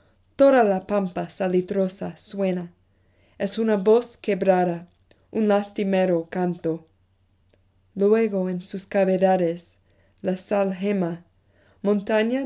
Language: English